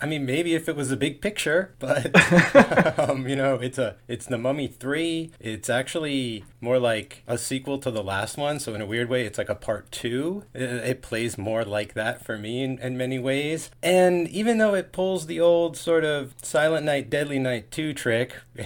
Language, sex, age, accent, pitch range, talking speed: English, male, 30-49, American, 115-145 Hz, 210 wpm